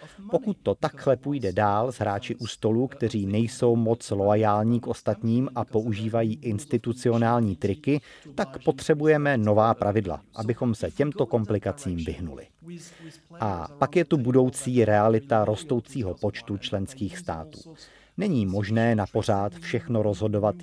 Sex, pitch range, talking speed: male, 105-130 Hz, 120 wpm